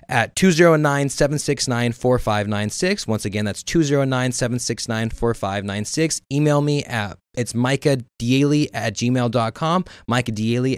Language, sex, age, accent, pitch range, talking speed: English, male, 20-39, American, 115-150 Hz, 85 wpm